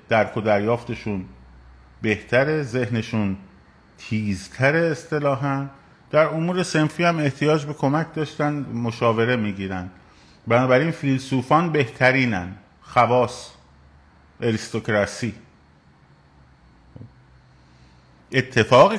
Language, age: Persian, 50-69